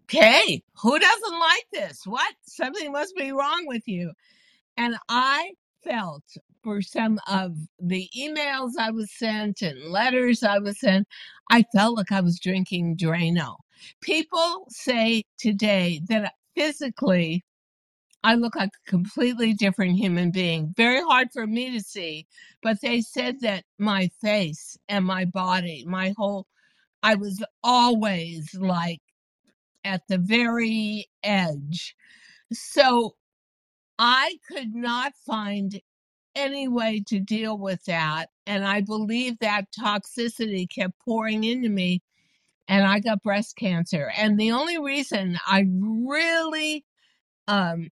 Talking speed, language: 130 wpm, English